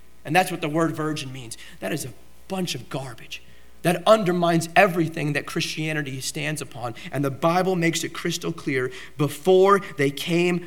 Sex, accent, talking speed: male, American, 170 wpm